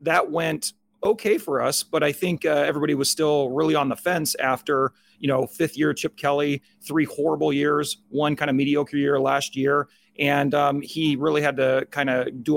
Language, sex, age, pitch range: English, male, 30-49, 135-160 Hz